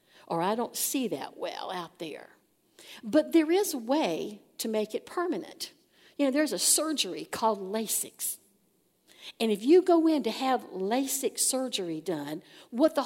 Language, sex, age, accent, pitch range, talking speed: English, female, 60-79, American, 205-295 Hz, 165 wpm